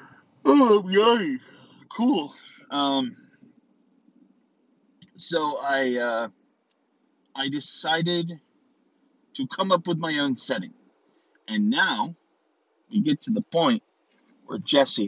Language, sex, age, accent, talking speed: English, male, 40-59, American, 100 wpm